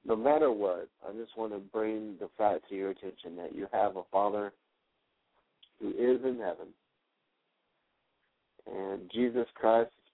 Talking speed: 155 wpm